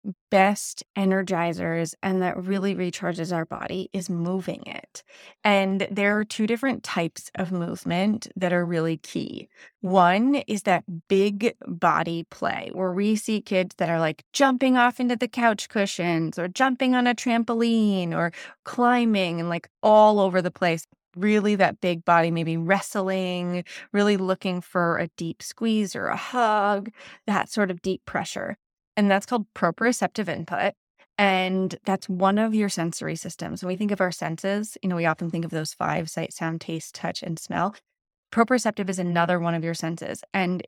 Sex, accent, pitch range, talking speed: female, American, 175-210 Hz, 170 wpm